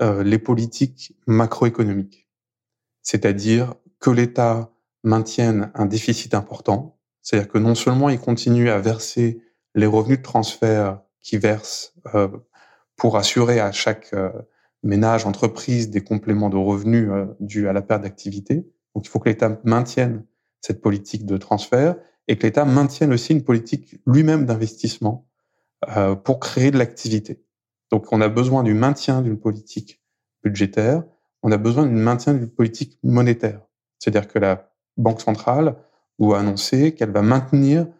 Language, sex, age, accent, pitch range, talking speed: French, male, 20-39, French, 110-135 Hz, 140 wpm